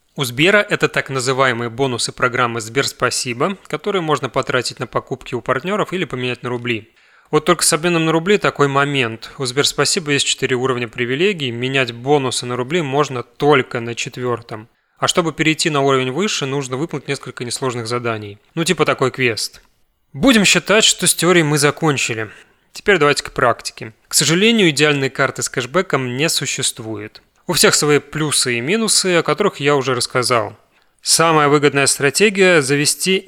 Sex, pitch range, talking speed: male, 125-155 Hz, 165 wpm